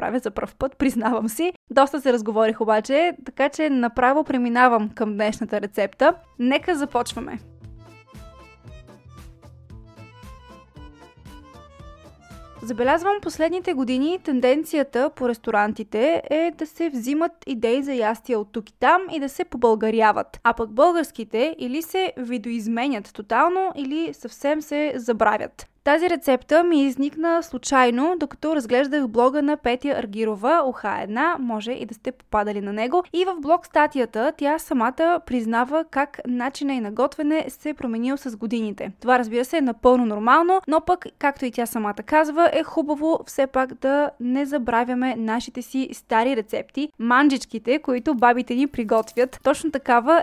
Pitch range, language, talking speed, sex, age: 230-305 Hz, Bulgarian, 140 wpm, female, 20-39